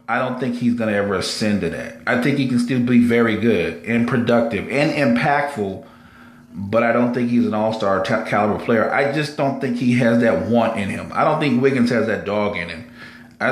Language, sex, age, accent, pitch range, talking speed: English, male, 40-59, American, 115-130 Hz, 225 wpm